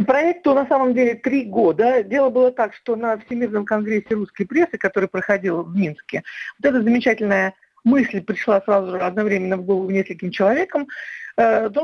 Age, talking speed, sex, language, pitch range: 50-69, 160 wpm, female, Russian, 205-255 Hz